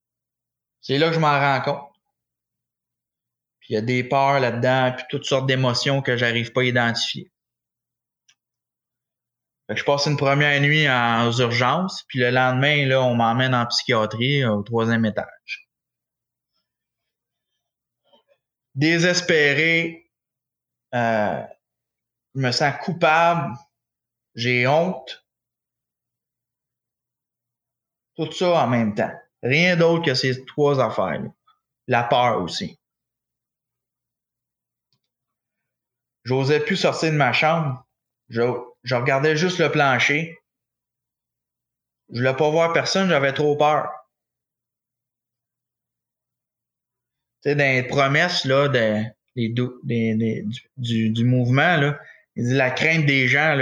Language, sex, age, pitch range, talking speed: English, male, 20-39, 120-150 Hz, 120 wpm